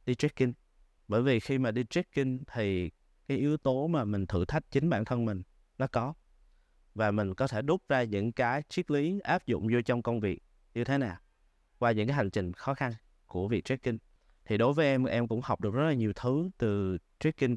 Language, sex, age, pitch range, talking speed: Vietnamese, male, 20-39, 100-135 Hz, 220 wpm